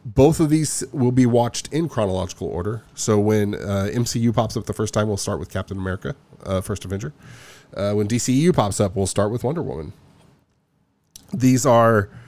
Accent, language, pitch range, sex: American, English, 100-130 Hz, male